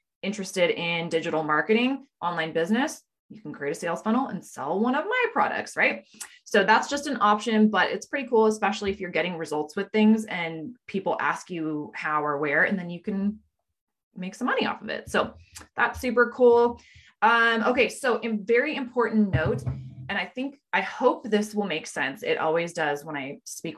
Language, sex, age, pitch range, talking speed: English, female, 20-39, 170-235 Hz, 195 wpm